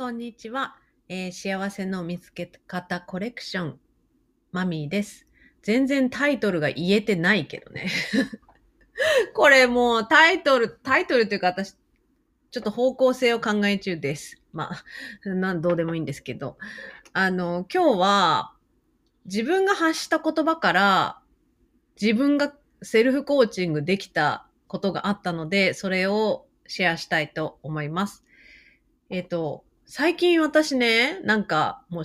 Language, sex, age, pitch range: Japanese, female, 30-49, 175-260 Hz